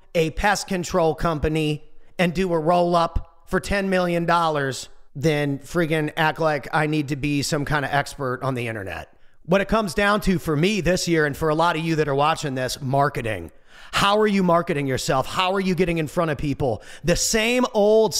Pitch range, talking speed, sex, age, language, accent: 155-190 Hz, 210 wpm, male, 40-59, English, American